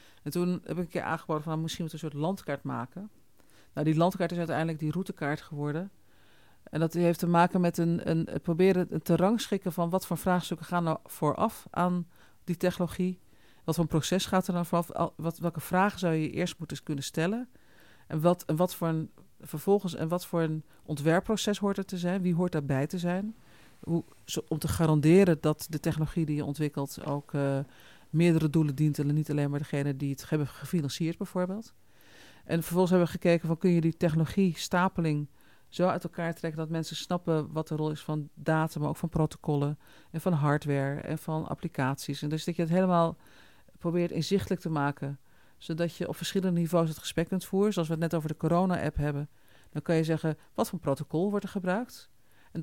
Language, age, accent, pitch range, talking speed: Dutch, 40-59, Dutch, 150-180 Hz, 205 wpm